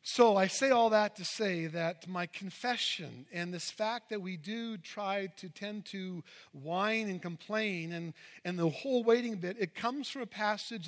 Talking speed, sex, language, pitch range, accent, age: 190 wpm, male, English, 195-250 Hz, American, 50-69